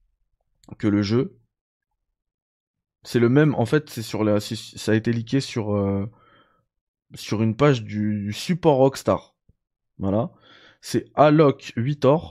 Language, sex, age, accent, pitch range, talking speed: French, male, 20-39, French, 100-125 Hz, 135 wpm